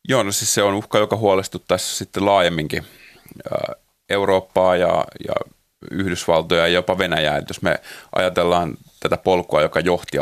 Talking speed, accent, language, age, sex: 145 wpm, native, Finnish, 30-49, male